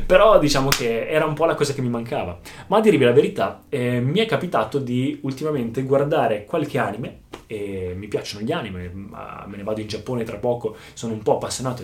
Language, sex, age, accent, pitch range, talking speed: Italian, male, 20-39, native, 115-170 Hz, 215 wpm